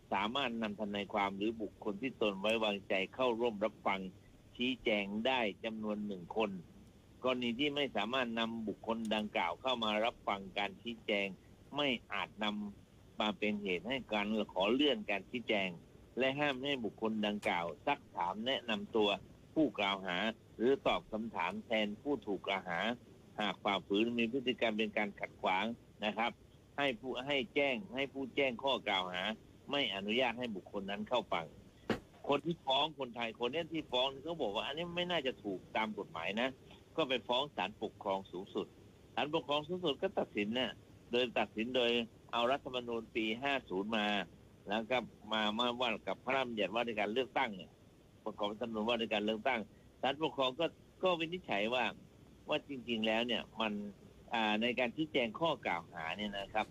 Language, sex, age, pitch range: Thai, male, 60-79, 105-130 Hz